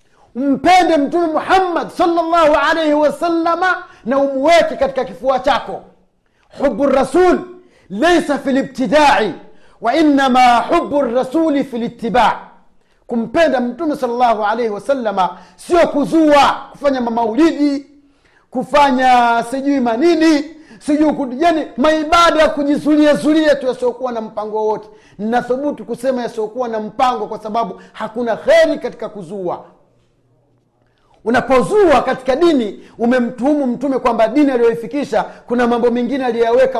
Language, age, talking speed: Swahili, 40-59, 110 wpm